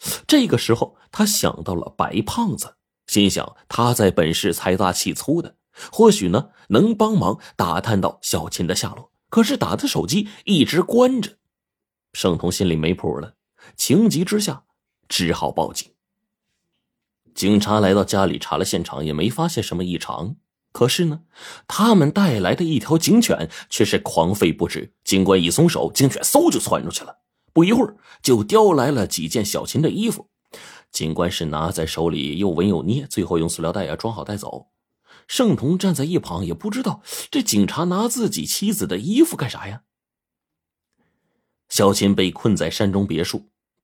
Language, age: Chinese, 30-49